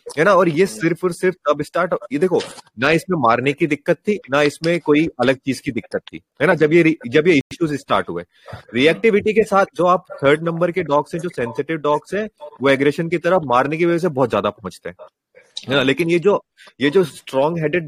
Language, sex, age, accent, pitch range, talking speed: Hindi, male, 30-49, native, 130-170 Hz, 235 wpm